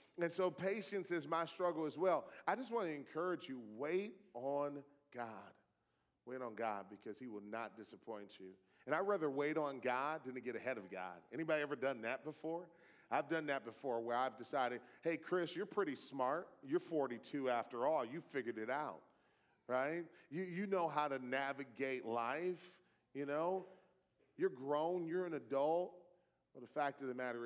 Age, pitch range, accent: 40-59, 115-155 Hz, American